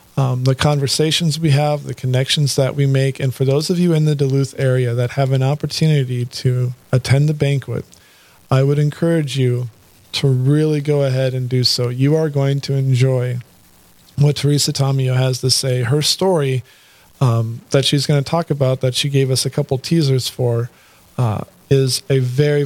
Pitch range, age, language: 130-145 Hz, 40-59, English